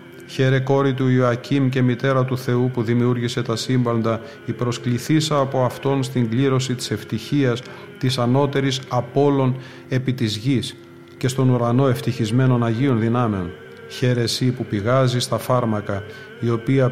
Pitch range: 120-135 Hz